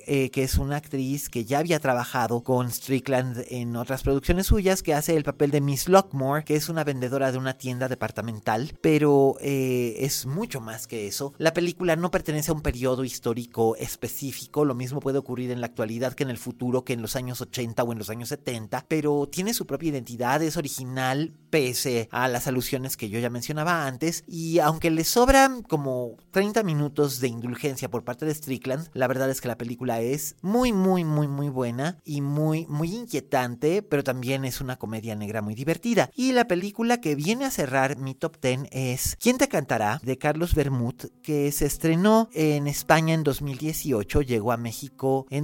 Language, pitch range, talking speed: Spanish, 125-155 Hz, 195 wpm